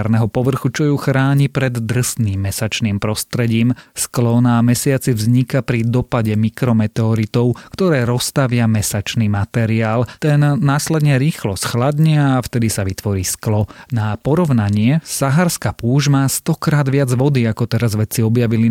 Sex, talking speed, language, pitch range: male, 130 wpm, Slovak, 110-140 Hz